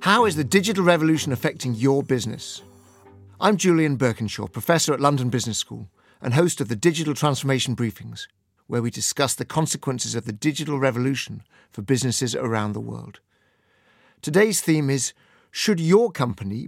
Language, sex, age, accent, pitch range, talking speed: English, male, 50-69, British, 120-155 Hz, 155 wpm